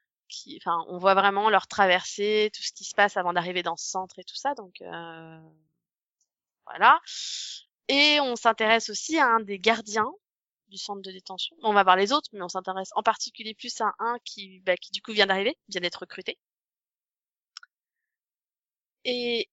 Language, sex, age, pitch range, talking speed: French, female, 20-39, 190-245 Hz, 175 wpm